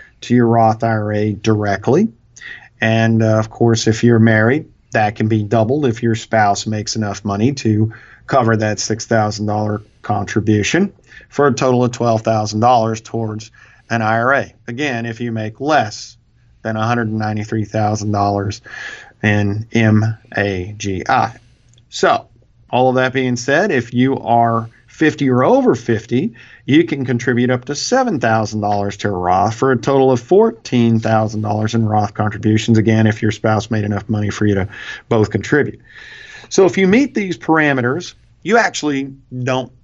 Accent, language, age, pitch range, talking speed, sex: American, English, 50-69, 105-125 Hz, 140 wpm, male